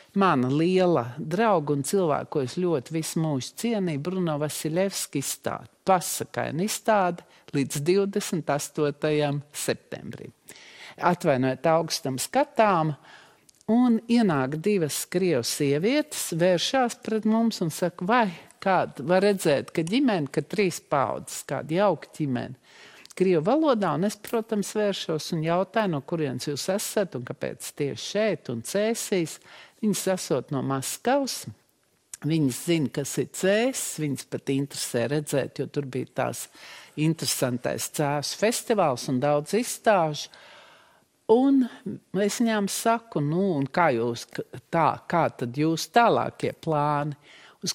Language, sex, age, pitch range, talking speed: English, male, 50-69, 145-205 Hz, 120 wpm